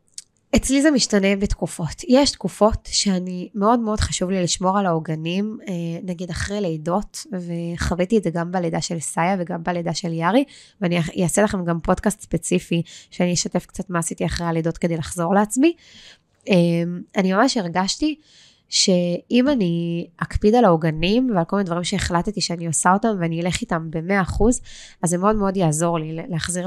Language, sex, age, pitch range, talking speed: Hebrew, female, 20-39, 170-205 Hz, 160 wpm